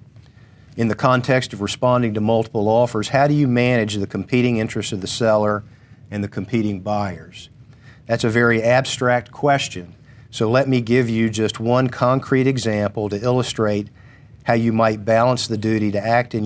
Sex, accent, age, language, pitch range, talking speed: male, American, 50-69, English, 110-125 Hz, 170 wpm